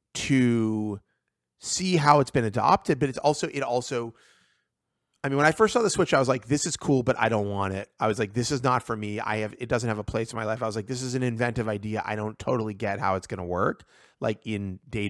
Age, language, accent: 30-49, English, American